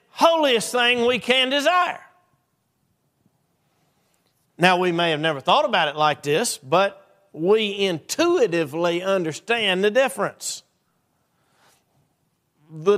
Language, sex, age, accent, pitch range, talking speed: English, male, 50-69, American, 145-200 Hz, 100 wpm